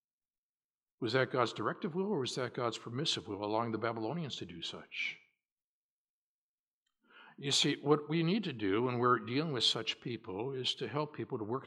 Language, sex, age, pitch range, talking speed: English, male, 60-79, 100-150 Hz, 185 wpm